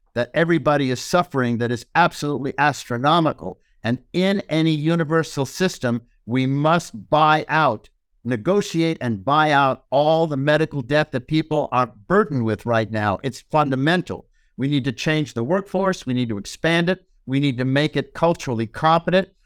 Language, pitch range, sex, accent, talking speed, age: English, 125-160 Hz, male, American, 160 wpm, 60-79